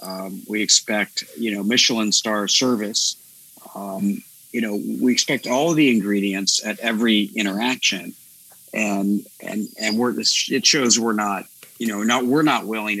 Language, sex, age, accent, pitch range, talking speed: English, male, 50-69, American, 100-125 Hz, 150 wpm